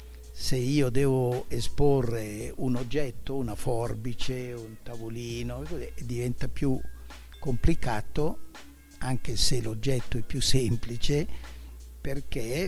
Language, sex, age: Italian, male, 60-79